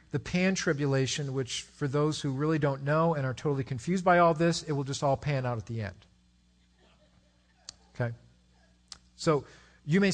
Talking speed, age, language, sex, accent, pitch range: 170 wpm, 50-69, English, male, American, 135-170 Hz